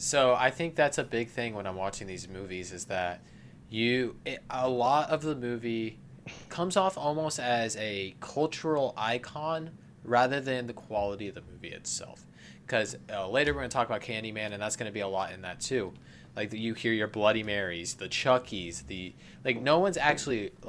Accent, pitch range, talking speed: American, 95-125 Hz, 205 wpm